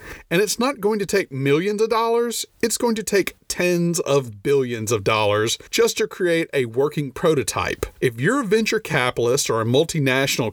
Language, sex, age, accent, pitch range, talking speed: English, male, 40-59, American, 130-210 Hz, 180 wpm